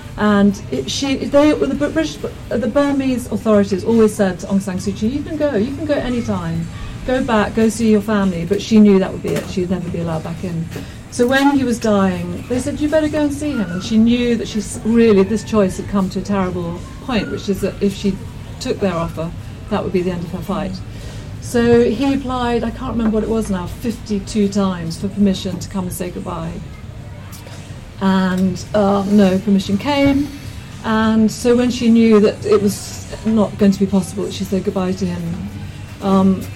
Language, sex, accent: English, female, British